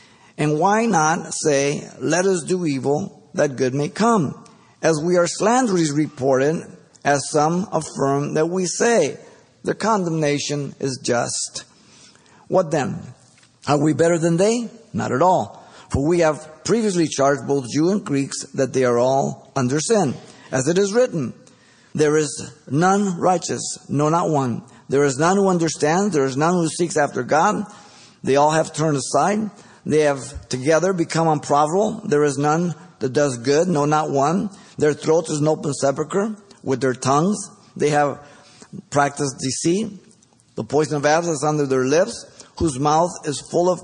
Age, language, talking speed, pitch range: 50-69, English, 165 wpm, 135-175 Hz